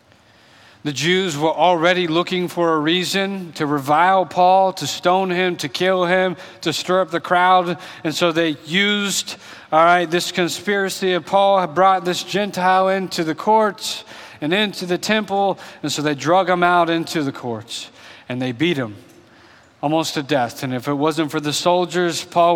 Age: 40-59